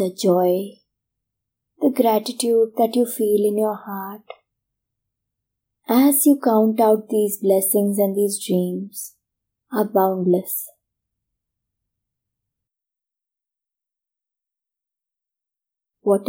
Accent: Indian